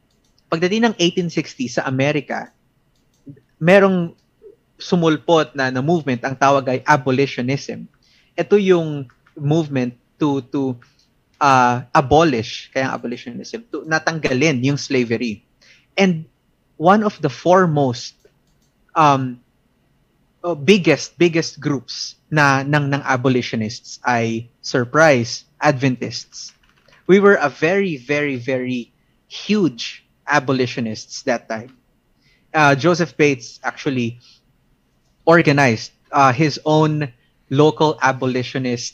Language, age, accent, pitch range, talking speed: Filipino, 20-39, native, 125-160 Hz, 95 wpm